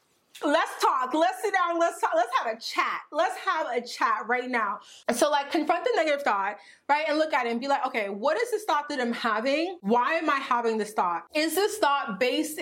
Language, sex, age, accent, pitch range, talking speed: English, female, 20-39, American, 225-295 Hz, 235 wpm